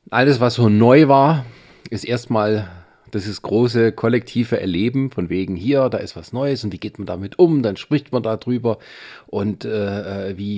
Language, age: German, 40-59